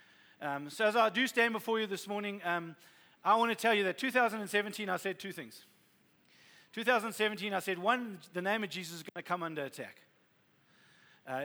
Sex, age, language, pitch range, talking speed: male, 40-59, English, 160-205 Hz, 195 wpm